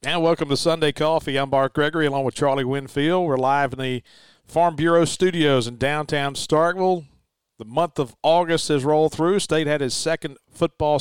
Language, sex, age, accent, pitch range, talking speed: English, male, 40-59, American, 130-155 Hz, 185 wpm